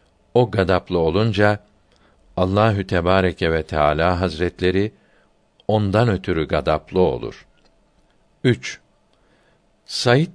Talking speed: 80 wpm